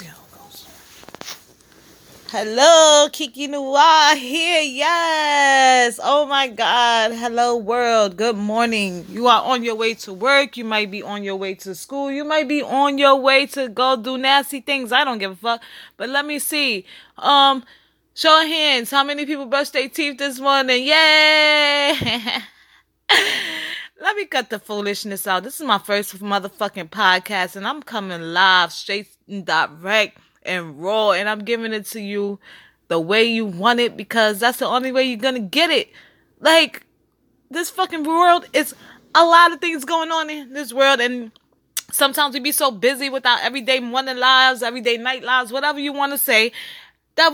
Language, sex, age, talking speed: English, female, 20-39, 170 wpm